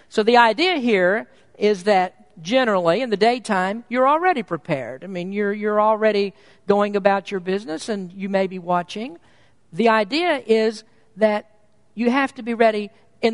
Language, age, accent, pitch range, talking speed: English, 50-69, American, 190-255 Hz, 165 wpm